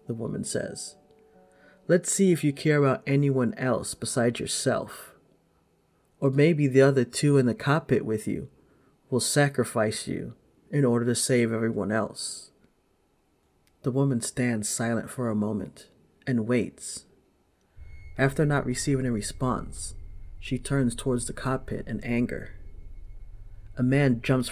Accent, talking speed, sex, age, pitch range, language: American, 135 wpm, male, 30-49, 100-130 Hz, English